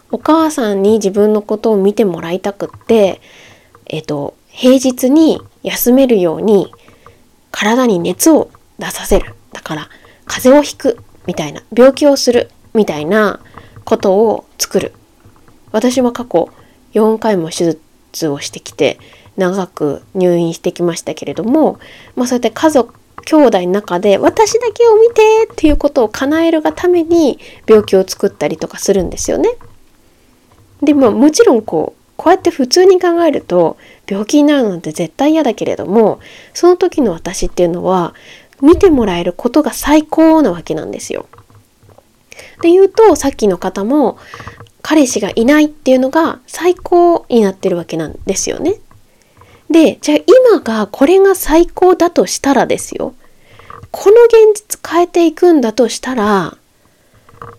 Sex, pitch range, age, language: female, 195-320 Hz, 20-39, Japanese